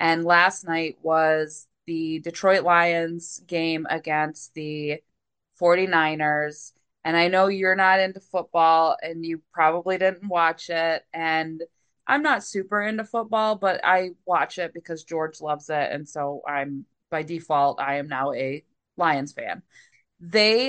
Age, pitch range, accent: 20-39, 160-195 Hz, American